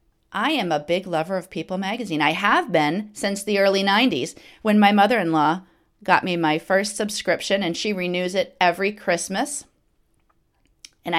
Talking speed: 160 wpm